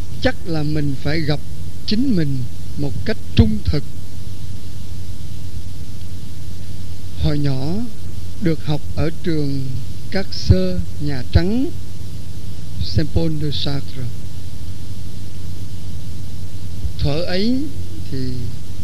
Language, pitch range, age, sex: Vietnamese, 90-145 Hz, 60-79, male